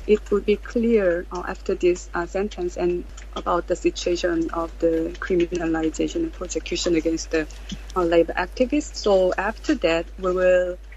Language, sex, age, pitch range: English, female, 20-39, 170-195 Hz